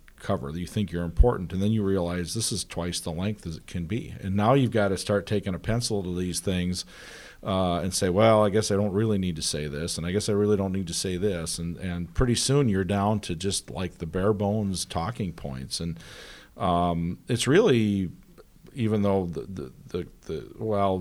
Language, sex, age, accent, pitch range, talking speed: English, male, 50-69, American, 90-105 Hz, 225 wpm